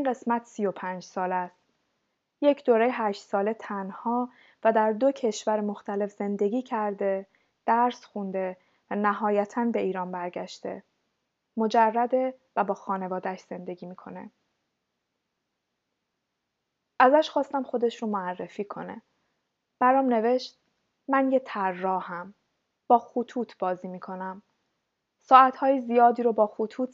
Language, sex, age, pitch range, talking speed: Persian, female, 20-39, 195-235 Hz, 115 wpm